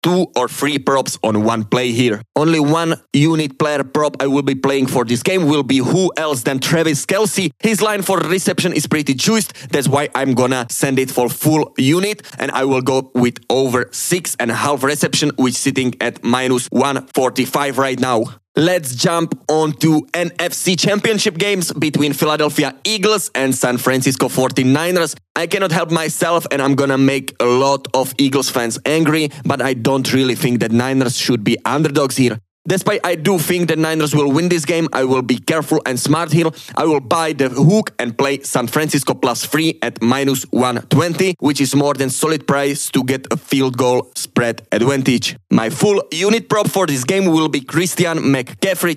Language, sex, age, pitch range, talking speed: English, male, 20-39, 130-170 Hz, 190 wpm